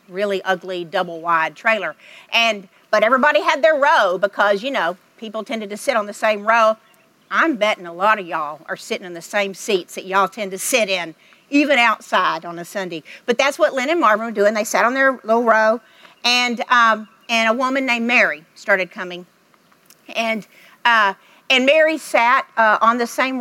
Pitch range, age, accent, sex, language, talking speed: 195-240 Hz, 50-69, American, female, English, 195 wpm